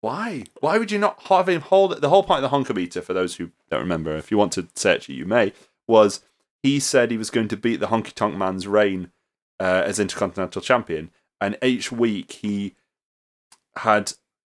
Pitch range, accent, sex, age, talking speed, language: 90-120 Hz, British, male, 30-49, 205 wpm, English